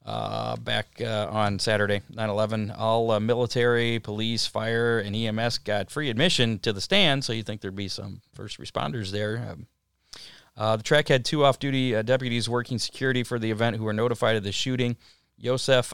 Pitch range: 105-125 Hz